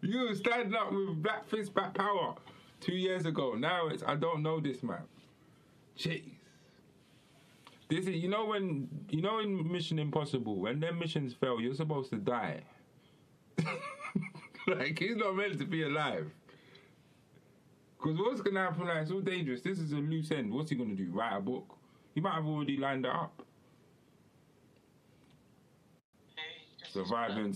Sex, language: male, English